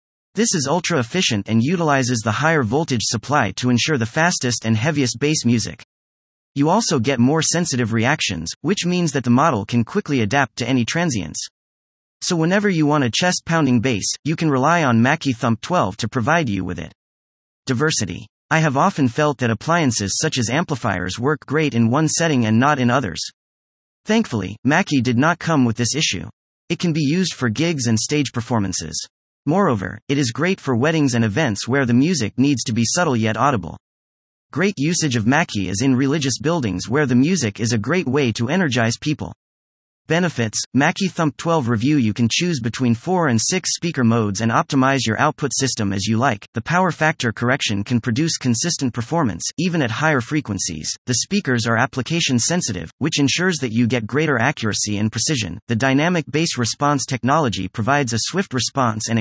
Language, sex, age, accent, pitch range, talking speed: English, male, 30-49, American, 115-155 Hz, 185 wpm